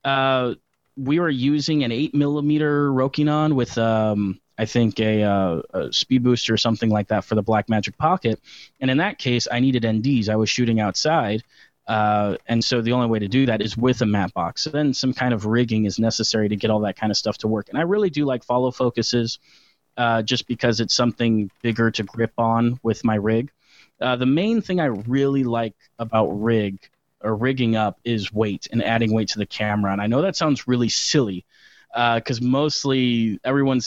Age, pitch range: 30-49, 110-135 Hz